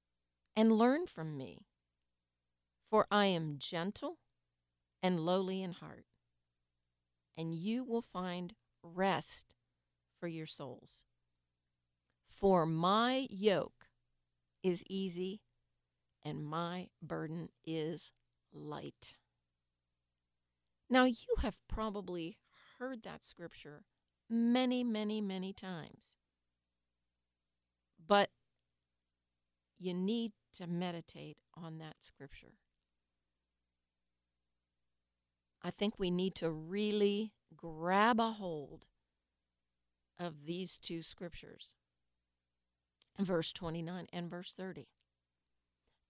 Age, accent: 40-59, American